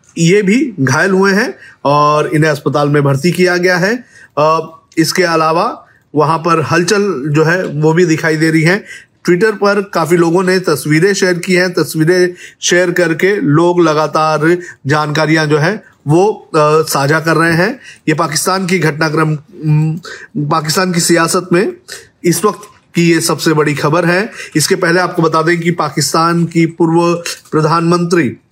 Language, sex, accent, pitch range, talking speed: Hindi, male, native, 155-175 Hz, 155 wpm